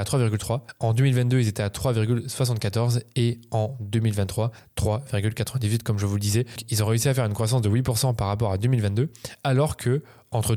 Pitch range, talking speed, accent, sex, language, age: 105-125 Hz, 180 wpm, French, male, French, 20-39